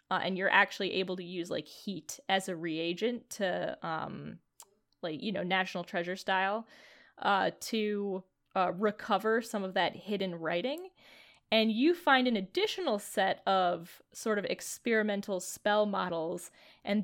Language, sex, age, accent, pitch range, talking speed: English, female, 10-29, American, 180-225 Hz, 150 wpm